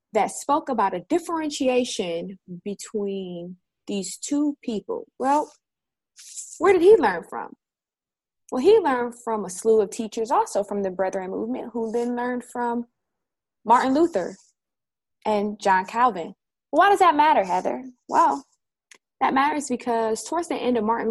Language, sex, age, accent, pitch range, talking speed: English, female, 20-39, American, 220-315 Hz, 145 wpm